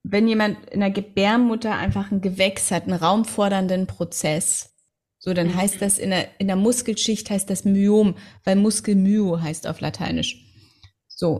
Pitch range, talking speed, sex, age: 190-220 Hz, 160 wpm, female, 30-49